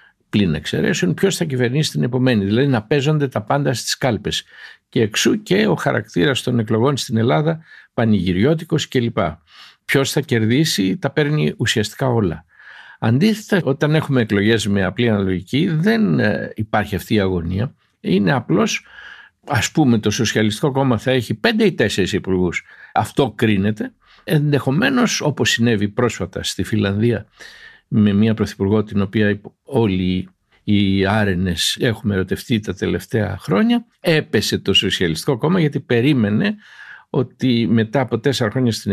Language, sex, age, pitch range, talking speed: Greek, male, 60-79, 105-155 Hz, 140 wpm